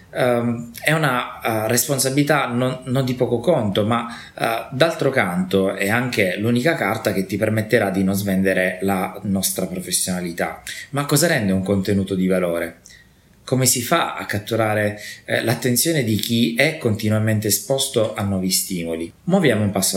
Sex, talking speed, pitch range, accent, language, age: male, 140 wpm, 95-125 Hz, native, Italian, 20-39